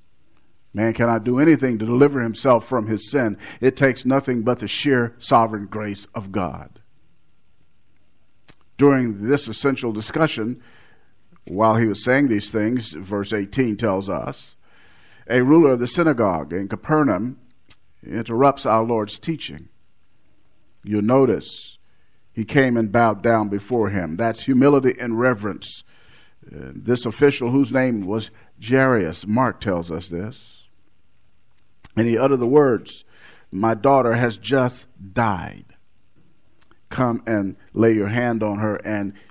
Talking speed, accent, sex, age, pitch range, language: 130 wpm, American, male, 50-69, 105-130 Hz, English